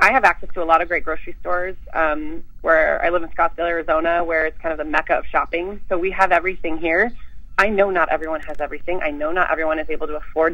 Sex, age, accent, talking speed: female, 30-49, American, 250 wpm